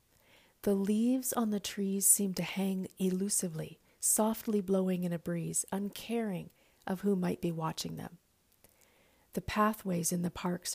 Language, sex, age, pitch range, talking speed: English, female, 40-59, 180-225 Hz, 145 wpm